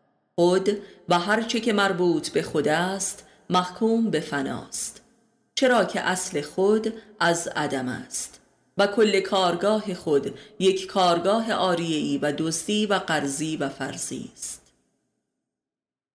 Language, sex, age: Persian, female, 30-49